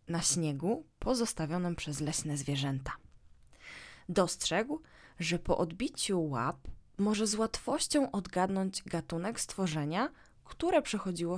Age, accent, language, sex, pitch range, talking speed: 20-39, native, Polish, female, 150-220 Hz, 100 wpm